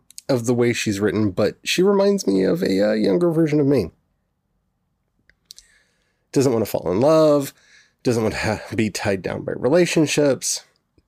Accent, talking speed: American, 170 wpm